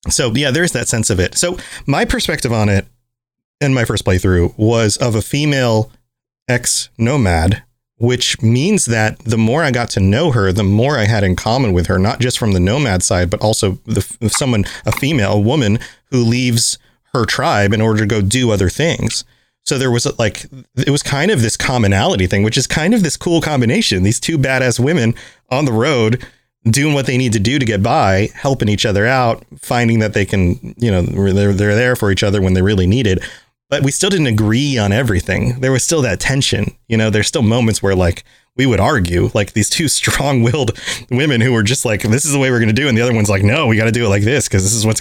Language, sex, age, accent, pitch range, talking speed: English, male, 30-49, American, 105-130 Hz, 235 wpm